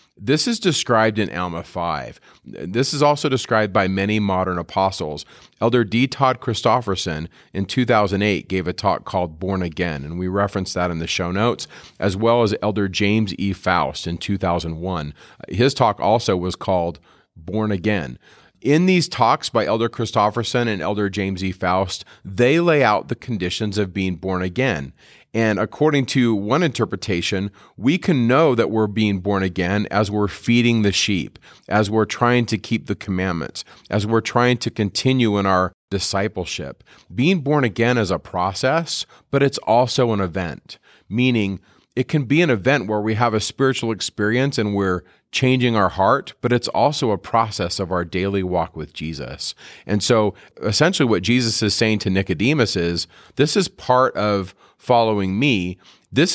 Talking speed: 170 wpm